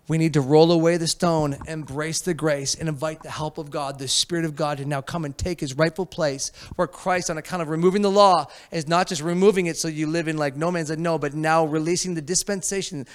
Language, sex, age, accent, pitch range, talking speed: English, male, 30-49, American, 140-175 Hz, 250 wpm